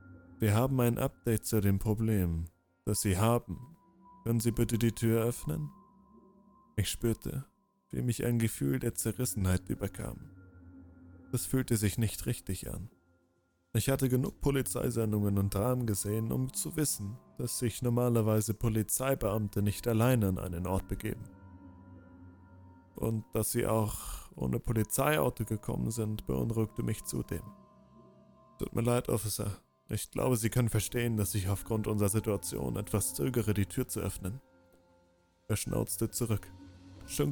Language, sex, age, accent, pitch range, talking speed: German, male, 20-39, German, 95-125 Hz, 140 wpm